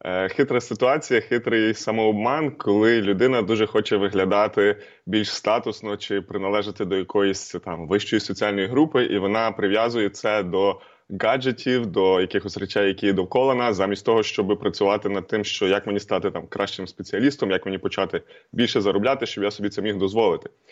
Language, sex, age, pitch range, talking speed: Ukrainian, male, 20-39, 100-130 Hz, 160 wpm